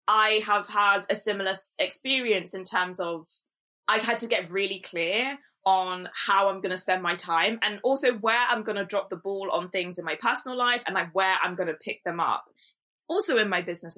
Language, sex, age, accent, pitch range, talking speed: English, female, 20-39, British, 185-235 Hz, 220 wpm